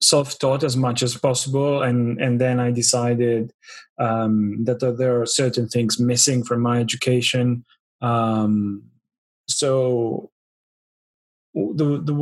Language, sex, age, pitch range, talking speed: English, male, 30-49, 120-135 Hz, 125 wpm